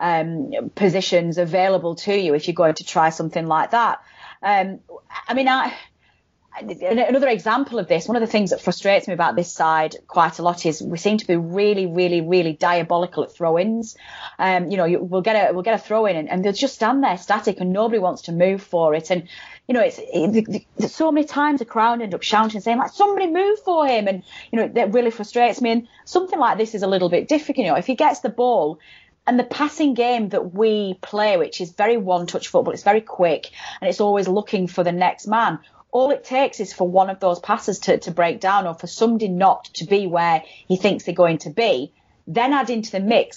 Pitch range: 180-230 Hz